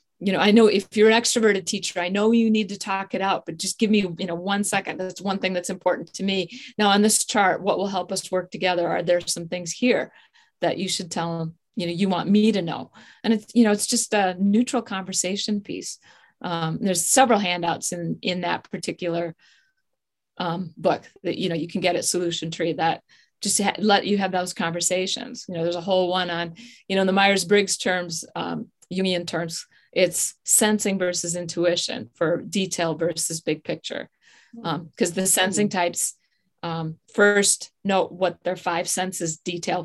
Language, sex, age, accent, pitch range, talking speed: English, female, 40-59, American, 170-205 Hz, 200 wpm